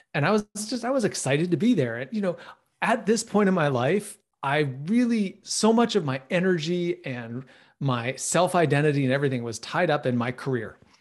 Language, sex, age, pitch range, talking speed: English, male, 30-49, 130-185 Hz, 195 wpm